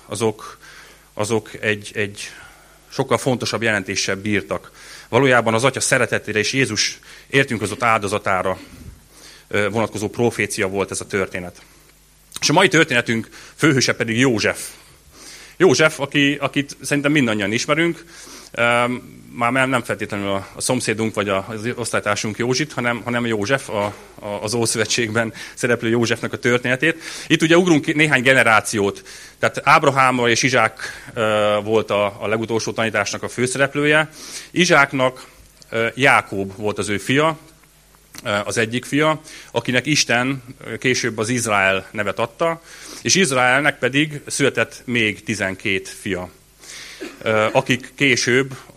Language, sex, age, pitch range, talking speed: Hungarian, male, 30-49, 105-135 Hz, 115 wpm